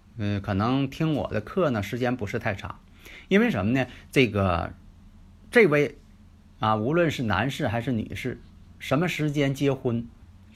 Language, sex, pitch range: Chinese, male, 95-125 Hz